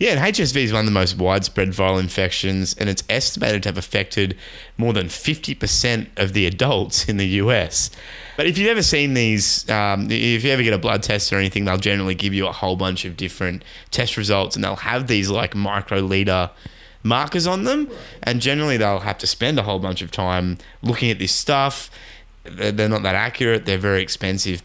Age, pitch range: 20-39, 95-115 Hz